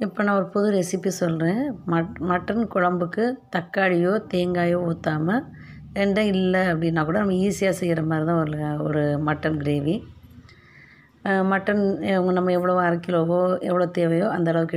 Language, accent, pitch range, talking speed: Tamil, native, 165-200 Hz, 140 wpm